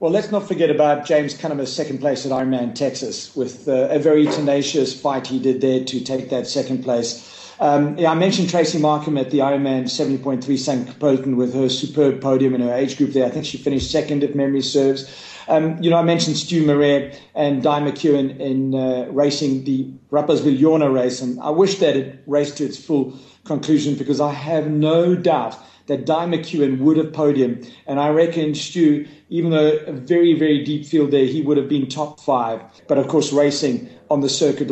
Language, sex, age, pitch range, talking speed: English, male, 40-59, 130-150 Hz, 200 wpm